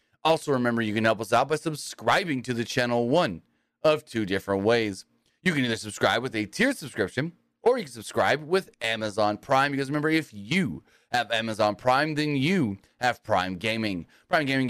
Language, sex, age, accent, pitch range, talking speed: English, male, 30-49, American, 110-150 Hz, 190 wpm